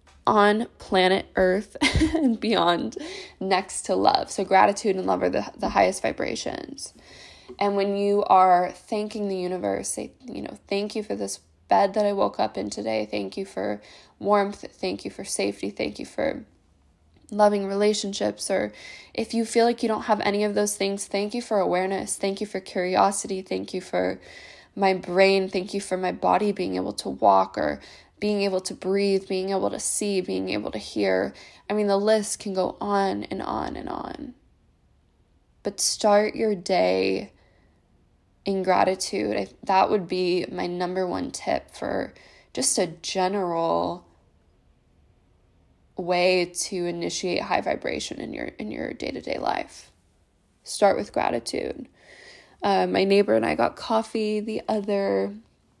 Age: 10-29